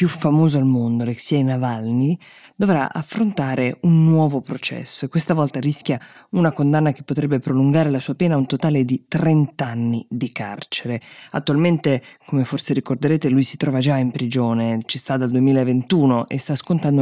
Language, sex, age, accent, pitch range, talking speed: Italian, female, 20-39, native, 130-155 Hz, 165 wpm